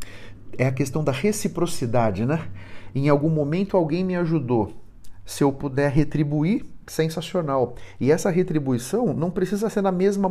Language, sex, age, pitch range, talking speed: Portuguese, male, 40-59, 130-185 Hz, 145 wpm